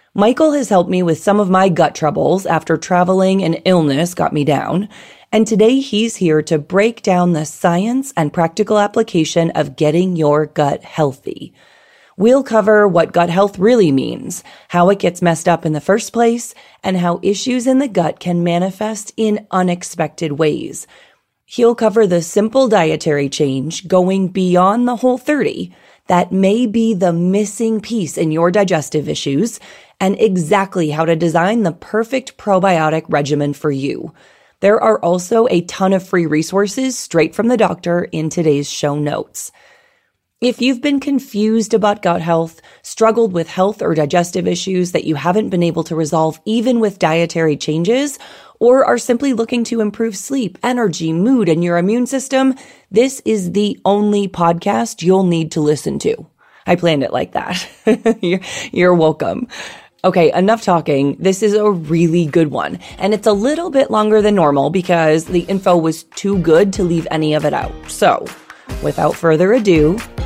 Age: 30-49